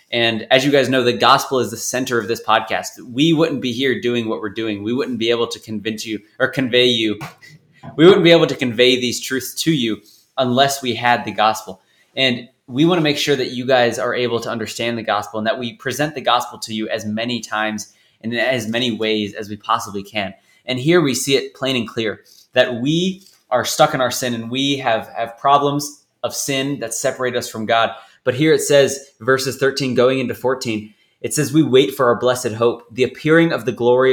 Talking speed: 230 wpm